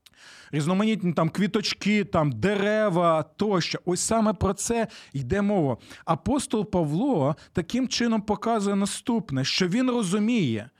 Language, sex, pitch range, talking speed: Ukrainian, male, 165-215 Hz, 115 wpm